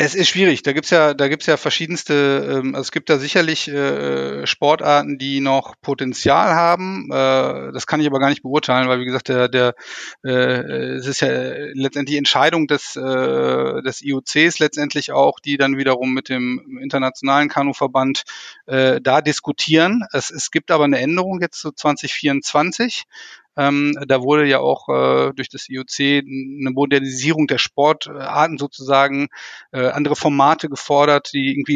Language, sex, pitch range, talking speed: German, male, 130-150 Hz, 160 wpm